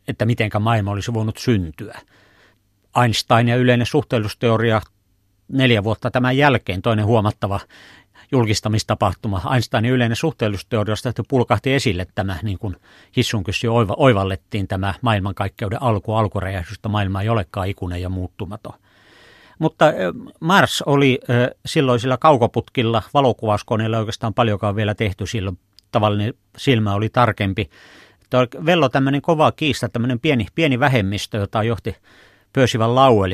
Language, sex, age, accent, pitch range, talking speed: Finnish, male, 50-69, native, 105-125 Hz, 115 wpm